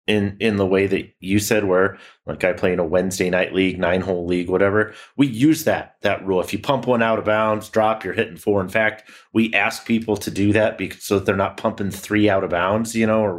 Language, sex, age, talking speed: English, male, 30-49, 255 wpm